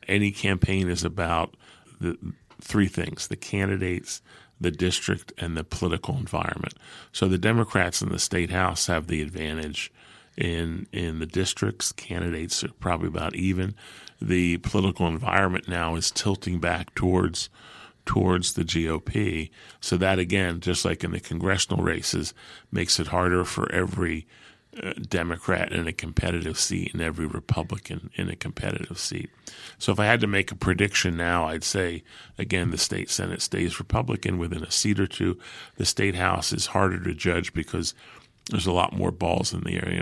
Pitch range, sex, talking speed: 85-100 Hz, male, 165 wpm